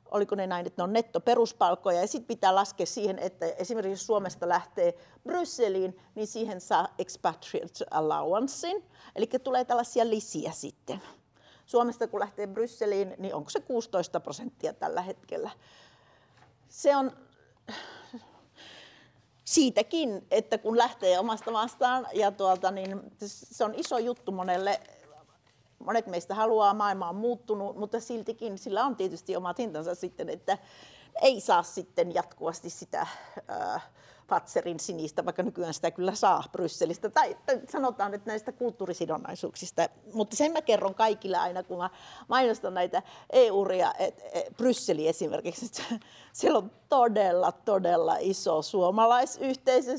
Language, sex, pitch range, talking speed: Finnish, female, 180-240 Hz, 125 wpm